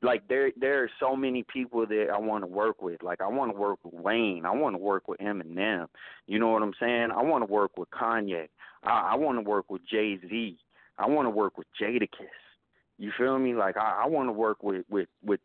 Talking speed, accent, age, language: 235 wpm, American, 30-49, English